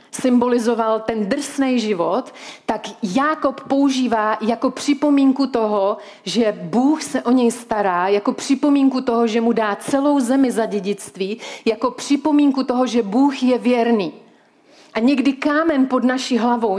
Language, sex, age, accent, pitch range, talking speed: Czech, female, 40-59, native, 220-260 Hz, 140 wpm